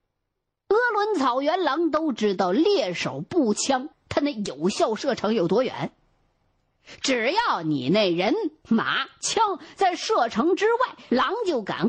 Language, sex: Chinese, female